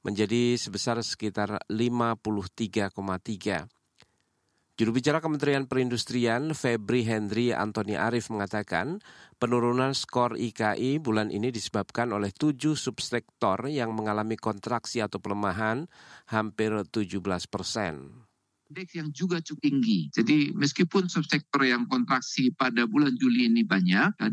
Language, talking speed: Indonesian, 115 wpm